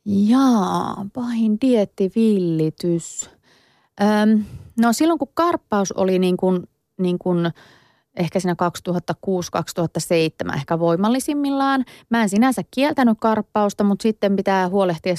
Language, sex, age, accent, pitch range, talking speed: Finnish, female, 30-49, native, 160-210 Hz, 100 wpm